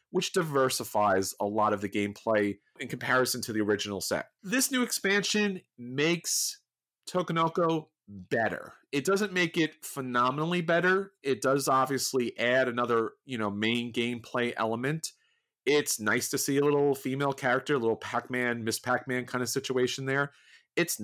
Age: 30-49